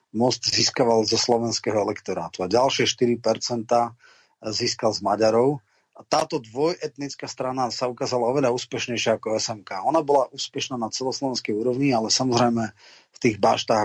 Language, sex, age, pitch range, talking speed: Slovak, male, 30-49, 110-130 Hz, 140 wpm